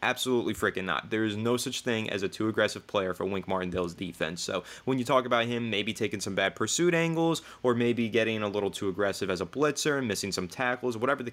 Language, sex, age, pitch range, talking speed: English, male, 20-39, 105-135 Hz, 240 wpm